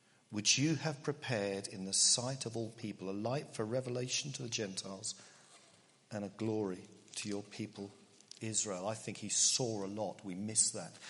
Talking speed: 180 wpm